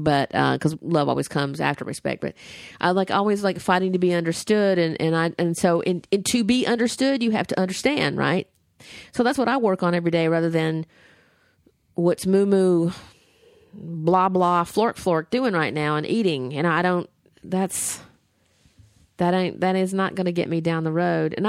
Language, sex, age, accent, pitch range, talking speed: English, female, 40-59, American, 165-210 Hz, 200 wpm